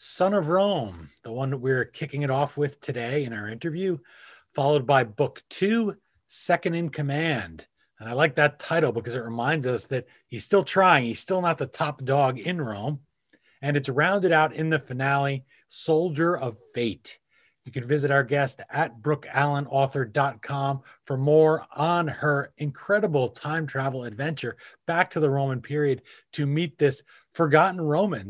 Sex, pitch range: male, 130-165 Hz